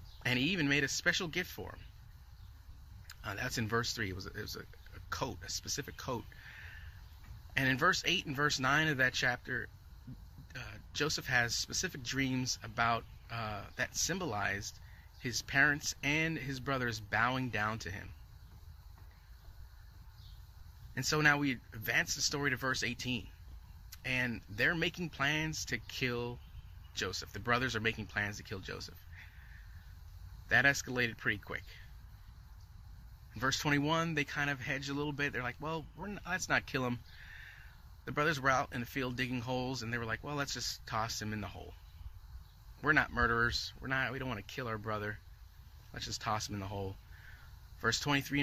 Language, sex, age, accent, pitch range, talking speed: English, male, 30-49, American, 95-130 Hz, 175 wpm